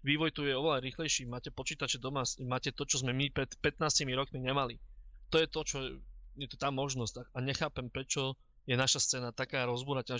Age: 20-39